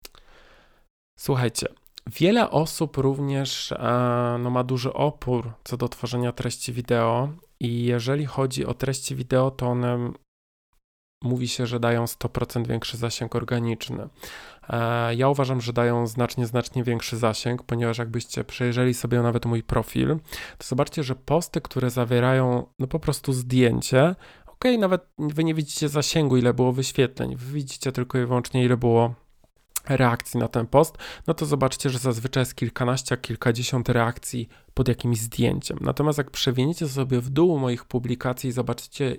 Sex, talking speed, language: male, 150 wpm, Polish